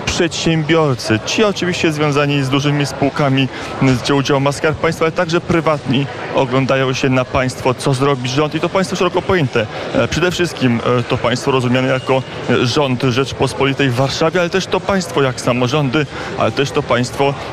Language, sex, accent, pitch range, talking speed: Polish, male, native, 130-155 Hz, 165 wpm